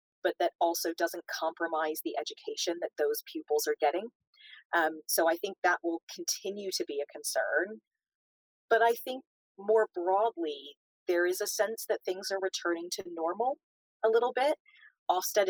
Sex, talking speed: female, 165 wpm